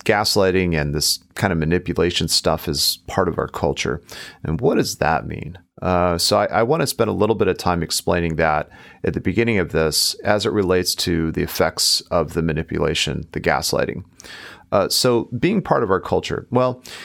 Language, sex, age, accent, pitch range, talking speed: English, male, 40-59, American, 85-105 Hz, 190 wpm